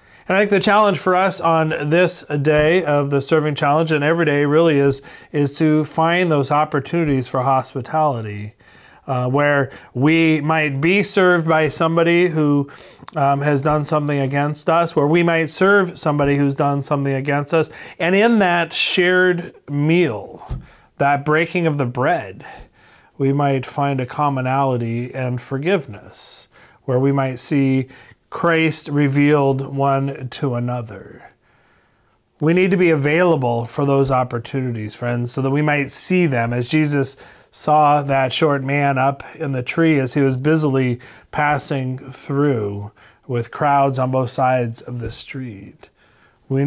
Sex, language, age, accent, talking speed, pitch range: male, English, 30-49, American, 150 wpm, 125-155 Hz